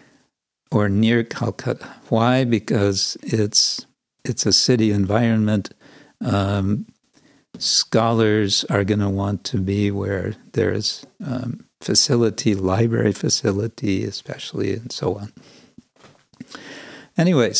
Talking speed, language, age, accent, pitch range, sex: 100 wpm, English, 60-79, American, 100-120 Hz, male